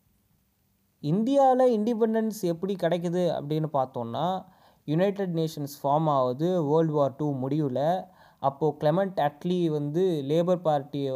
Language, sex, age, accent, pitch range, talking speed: Tamil, male, 20-39, native, 140-185 Hz, 110 wpm